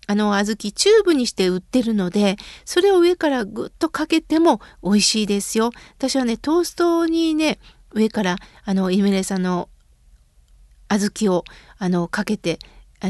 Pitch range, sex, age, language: 210-310 Hz, female, 40-59, Japanese